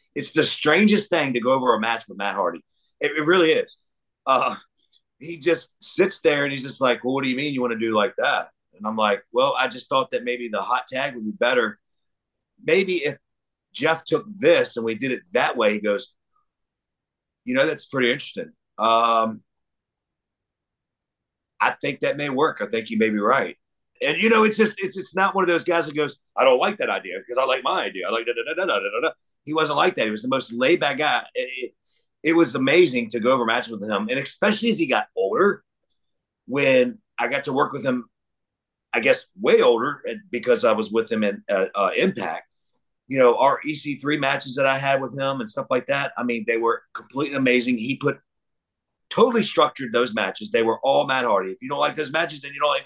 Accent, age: American, 40-59